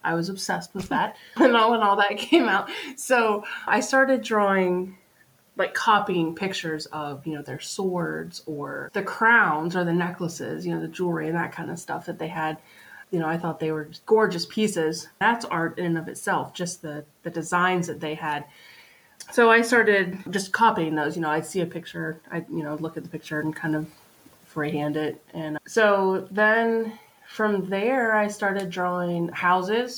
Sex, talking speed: female, 190 wpm